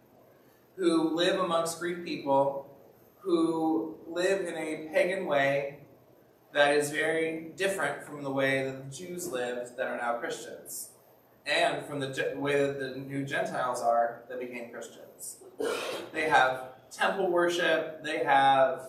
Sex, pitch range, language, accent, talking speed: male, 130-165 Hz, English, American, 140 wpm